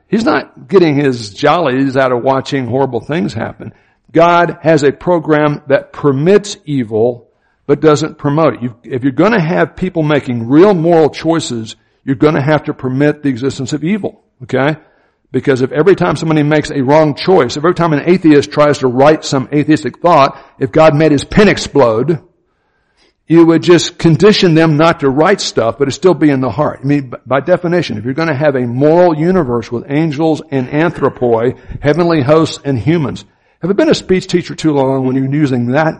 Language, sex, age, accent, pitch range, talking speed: English, male, 60-79, American, 135-165 Hz, 195 wpm